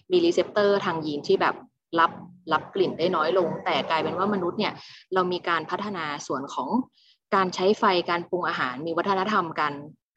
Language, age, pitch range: Thai, 20-39, 165-210 Hz